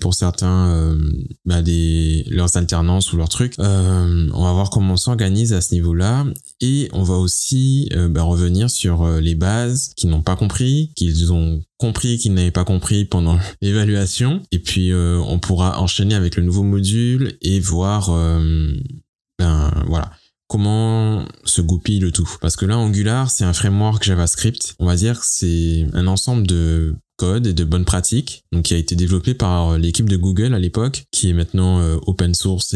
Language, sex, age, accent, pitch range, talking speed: French, male, 20-39, French, 85-105 Hz, 180 wpm